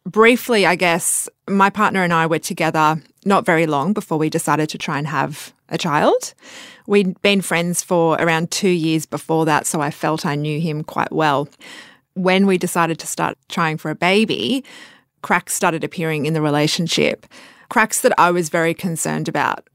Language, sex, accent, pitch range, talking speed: English, female, Australian, 160-205 Hz, 180 wpm